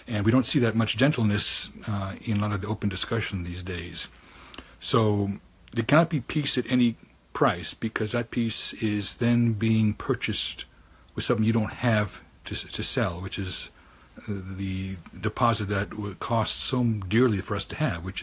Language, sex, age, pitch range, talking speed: English, male, 60-79, 95-110 Hz, 175 wpm